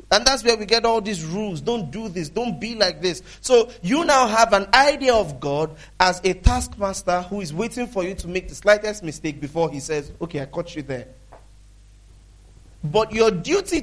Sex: male